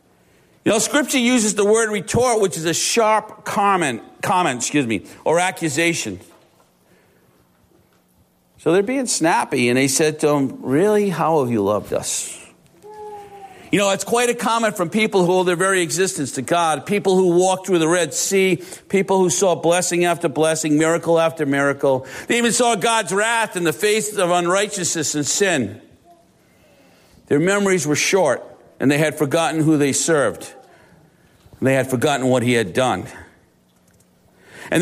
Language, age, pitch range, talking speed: English, 50-69, 150-220 Hz, 160 wpm